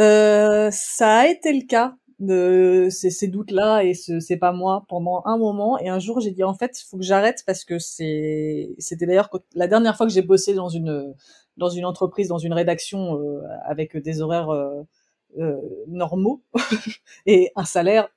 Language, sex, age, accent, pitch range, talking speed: French, female, 20-39, French, 180-225 Hz, 195 wpm